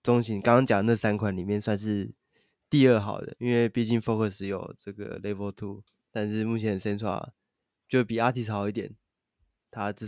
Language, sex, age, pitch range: Chinese, male, 20-39, 100-115 Hz